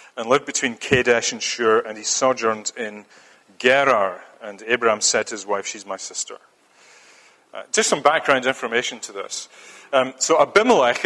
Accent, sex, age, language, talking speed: British, male, 40-59, English, 165 wpm